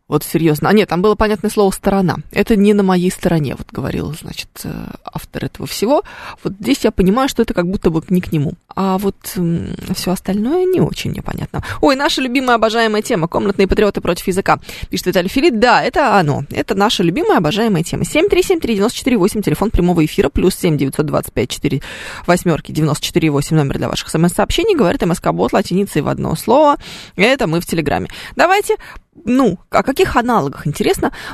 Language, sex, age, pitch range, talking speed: Russian, female, 20-39, 160-215 Hz, 170 wpm